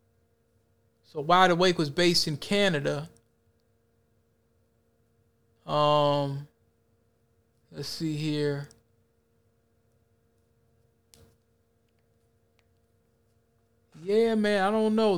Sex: male